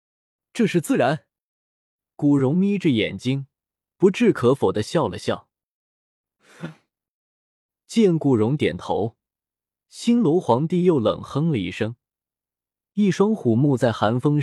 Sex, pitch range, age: male, 115-170 Hz, 20-39